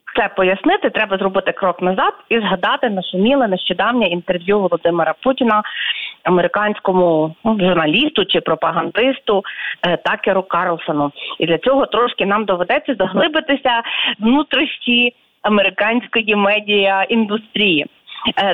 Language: Ukrainian